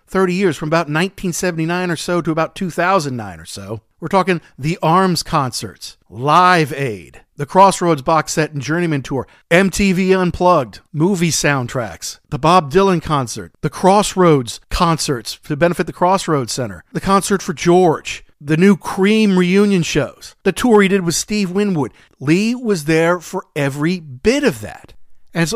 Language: English